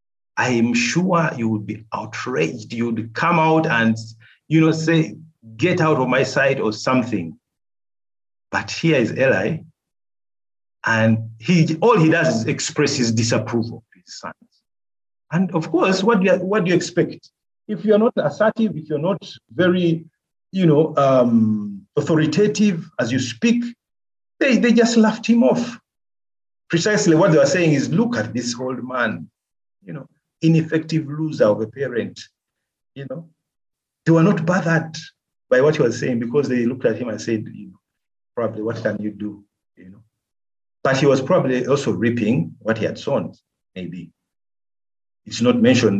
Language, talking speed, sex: English, 165 wpm, male